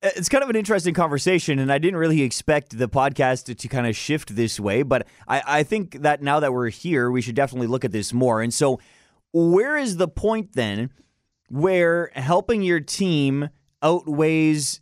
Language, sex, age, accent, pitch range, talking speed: English, male, 30-49, American, 130-170 Hz, 190 wpm